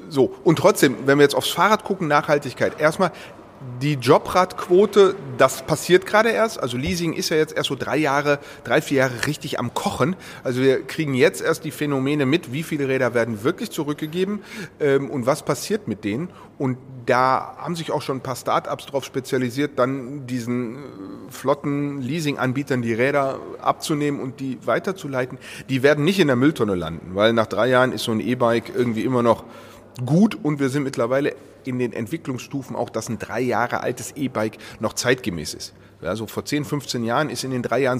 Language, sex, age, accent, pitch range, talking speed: German, male, 30-49, German, 120-150 Hz, 190 wpm